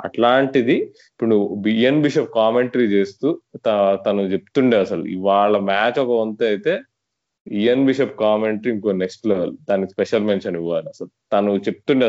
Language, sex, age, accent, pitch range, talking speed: Telugu, male, 20-39, native, 95-115 Hz, 135 wpm